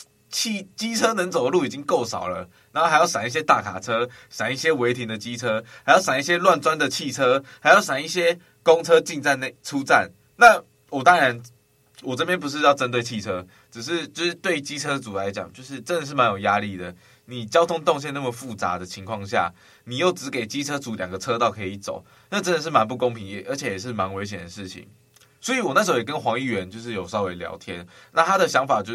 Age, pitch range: 20-39, 110-140 Hz